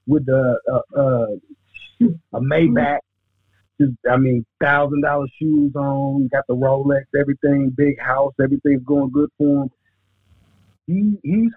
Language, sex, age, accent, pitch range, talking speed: English, male, 50-69, American, 125-160 Hz, 110 wpm